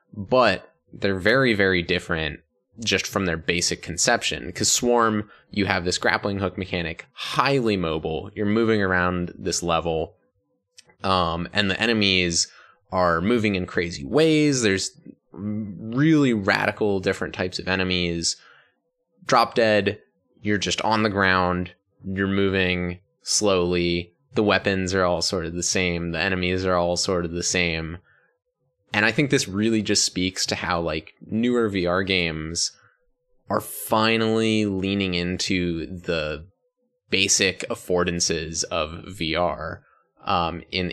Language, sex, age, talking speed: English, male, 20-39, 135 wpm